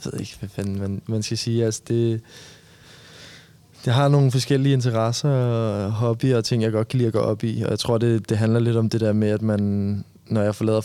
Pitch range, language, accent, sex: 105-120 Hz, Danish, native, male